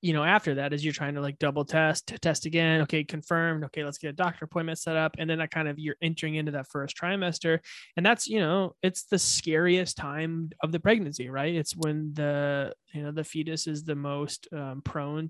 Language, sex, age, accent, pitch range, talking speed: English, male, 20-39, American, 145-160 Hz, 235 wpm